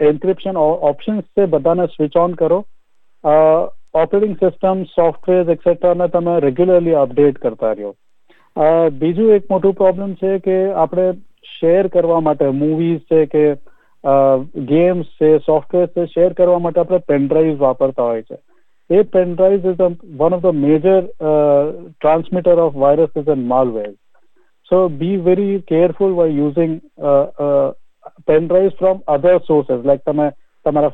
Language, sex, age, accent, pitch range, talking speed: Gujarati, male, 40-59, native, 150-180 Hz, 130 wpm